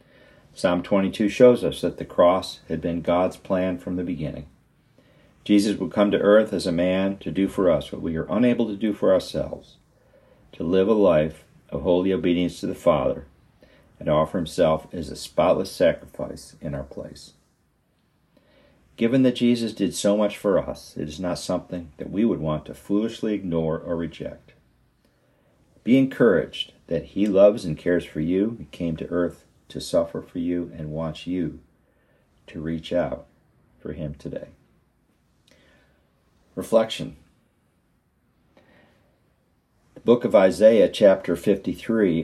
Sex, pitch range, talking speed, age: male, 80-100 Hz, 155 wpm, 50-69